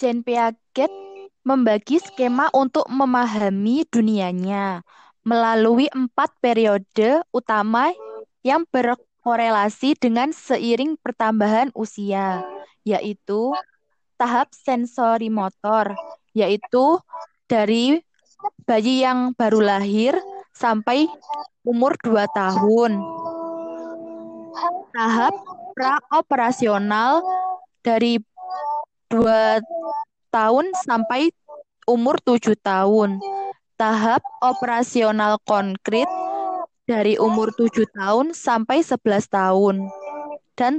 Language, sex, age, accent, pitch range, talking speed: Indonesian, female, 20-39, native, 220-295 Hz, 75 wpm